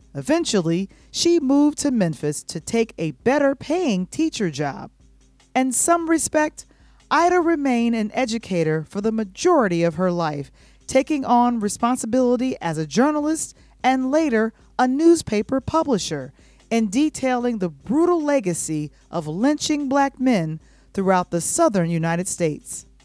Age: 40-59